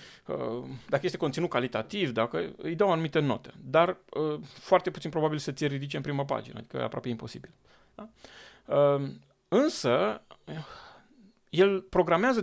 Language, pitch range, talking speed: Romanian, 130-185 Hz, 130 wpm